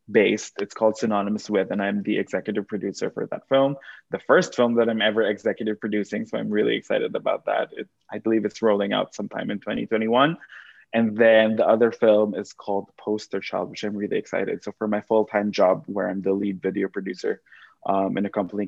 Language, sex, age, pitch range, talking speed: English, male, 20-39, 95-110 Hz, 200 wpm